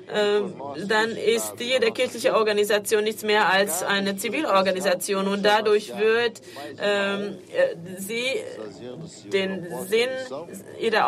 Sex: female